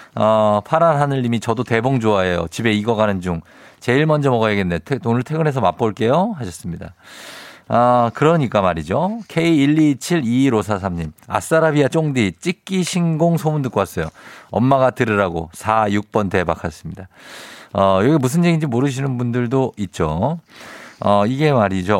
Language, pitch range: Korean, 105-165 Hz